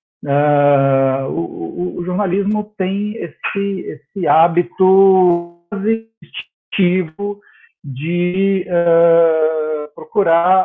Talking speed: 60 wpm